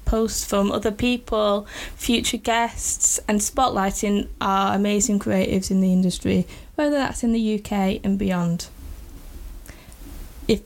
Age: 10-29